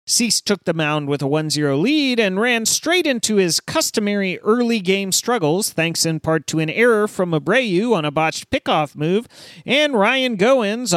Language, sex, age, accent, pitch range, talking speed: English, male, 40-59, American, 175-245 Hz, 185 wpm